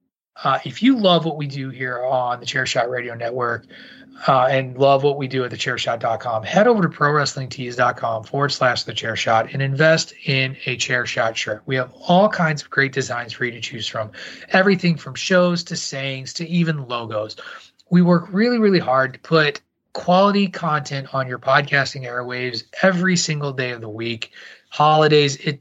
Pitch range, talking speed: 125-150 Hz, 185 wpm